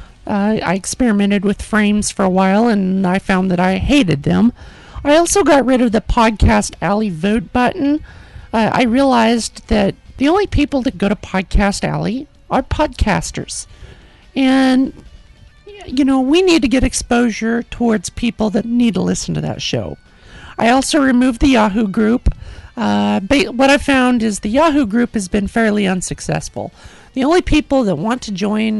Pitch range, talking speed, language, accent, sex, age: 200-260 Hz, 170 wpm, English, American, male, 50-69